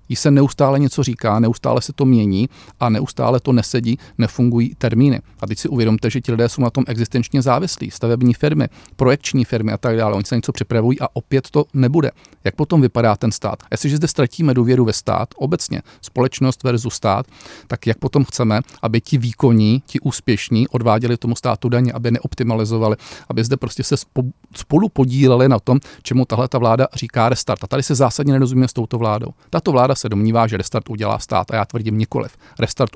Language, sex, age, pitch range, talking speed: Czech, male, 40-59, 115-130 Hz, 195 wpm